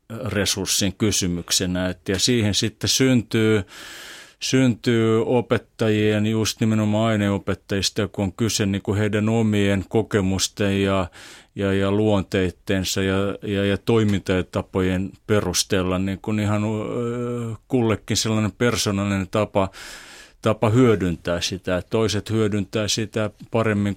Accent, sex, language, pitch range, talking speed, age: native, male, Finnish, 95-110 Hz, 100 wpm, 30-49